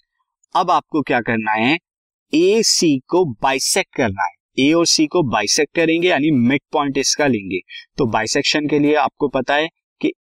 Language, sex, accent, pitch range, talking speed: Hindi, male, native, 115-180 Hz, 175 wpm